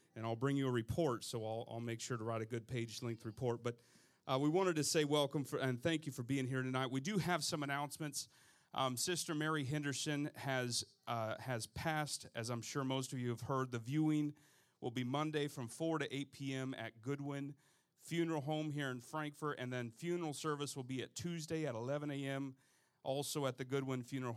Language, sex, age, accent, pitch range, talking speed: English, male, 40-59, American, 120-145 Hz, 210 wpm